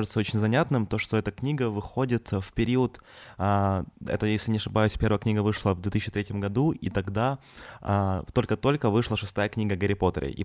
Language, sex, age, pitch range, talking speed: Ukrainian, male, 20-39, 95-110 Hz, 170 wpm